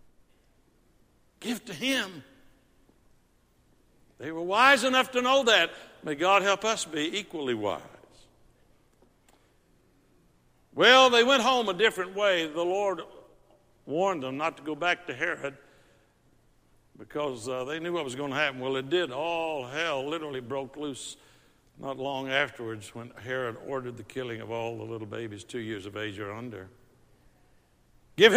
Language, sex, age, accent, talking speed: English, male, 60-79, American, 150 wpm